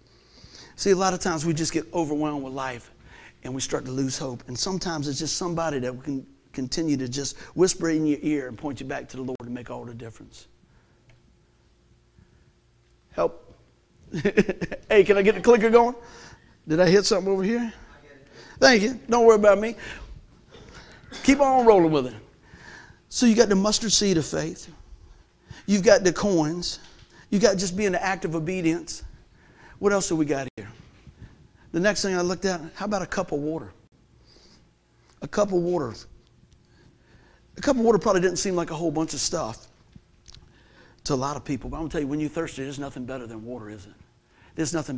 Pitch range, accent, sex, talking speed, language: 135-200 Hz, American, male, 195 wpm, English